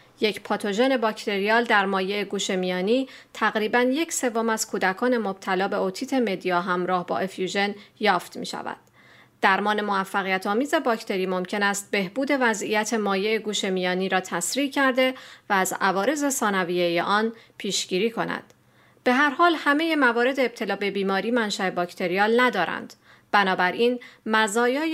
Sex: female